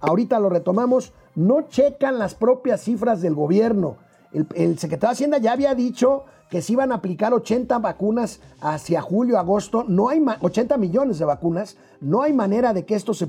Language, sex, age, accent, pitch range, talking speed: Spanish, male, 50-69, Mexican, 180-235 Hz, 185 wpm